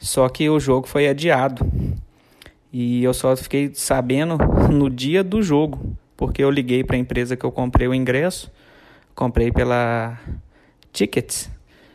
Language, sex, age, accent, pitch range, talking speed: Portuguese, male, 20-39, Brazilian, 125-155 Hz, 145 wpm